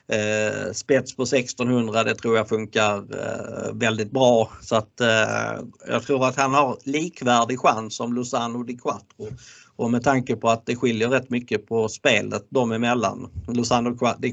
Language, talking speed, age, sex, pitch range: Swedish, 155 wpm, 50-69, male, 110-130 Hz